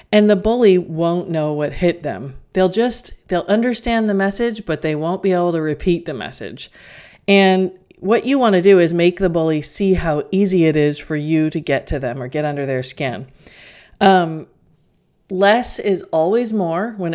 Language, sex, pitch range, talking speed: English, female, 155-195 Hz, 195 wpm